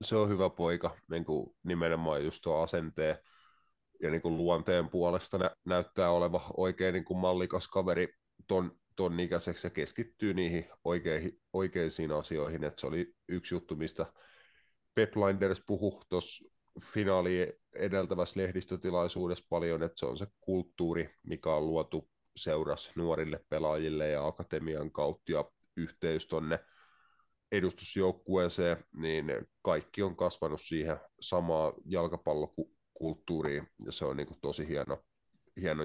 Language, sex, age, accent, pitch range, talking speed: Finnish, male, 30-49, native, 80-95 Hz, 125 wpm